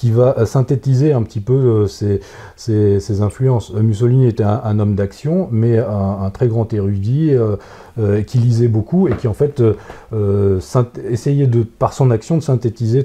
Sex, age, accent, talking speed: male, 40-59, French, 175 wpm